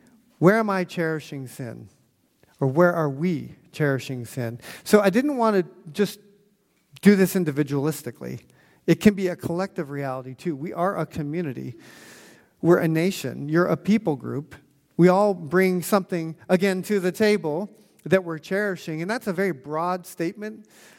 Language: English